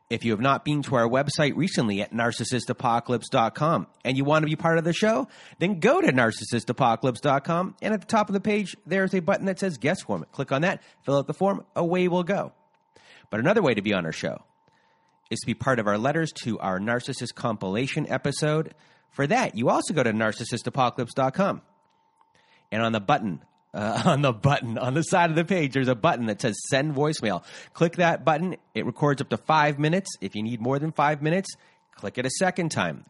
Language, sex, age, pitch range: English, male, 30-49, 120-170 Hz